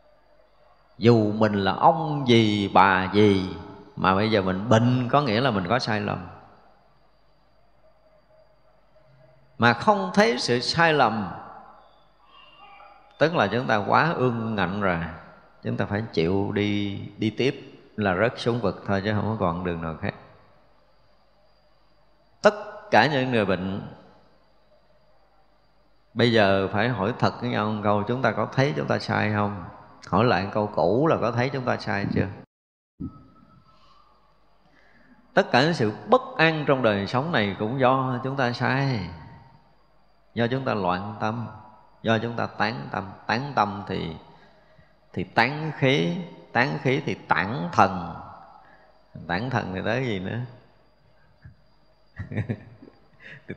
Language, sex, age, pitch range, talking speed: Vietnamese, male, 30-49, 100-130 Hz, 140 wpm